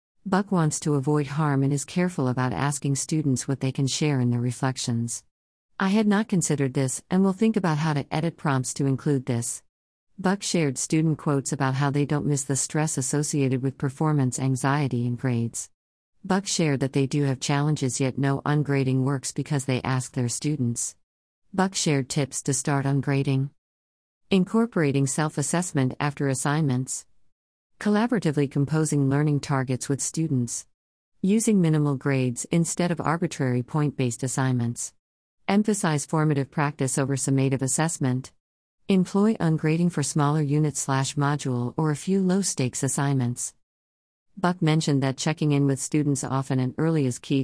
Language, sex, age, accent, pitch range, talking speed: English, female, 50-69, American, 130-155 Hz, 150 wpm